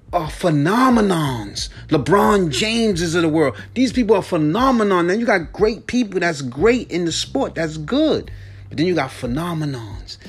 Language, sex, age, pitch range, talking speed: English, male, 30-49, 145-190 Hz, 170 wpm